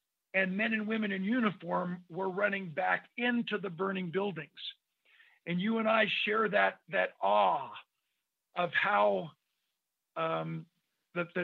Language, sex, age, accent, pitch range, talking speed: English, male, 50-69, American, 175-215 Hz, 130 wpm